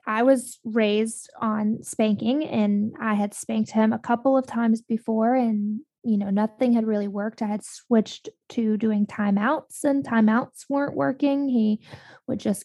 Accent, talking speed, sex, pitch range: American, 165 wpm, female, 205-235 Hz